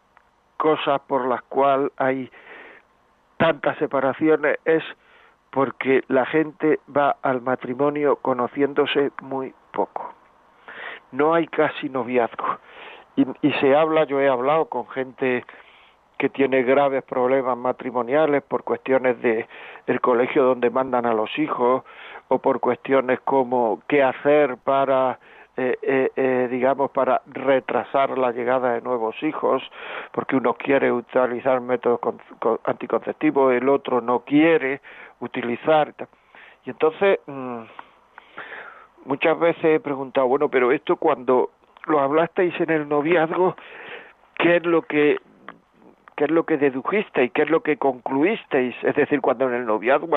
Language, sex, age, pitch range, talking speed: Spanish, male, 60-79, 125-150 Hz, 135 wpm